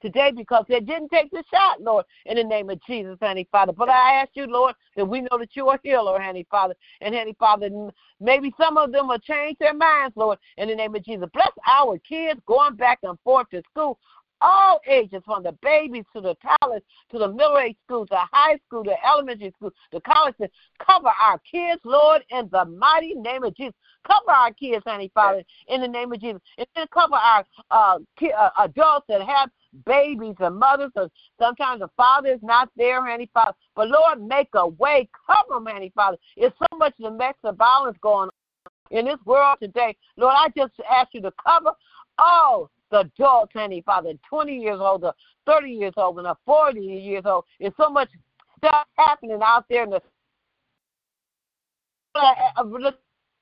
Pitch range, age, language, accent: 210-290 Hz, 50-69, English, American